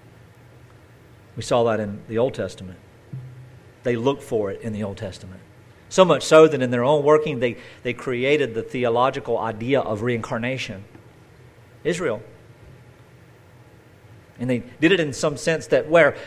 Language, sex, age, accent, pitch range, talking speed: English, male, 50-69, American, 120-160 Hz, 150 wpm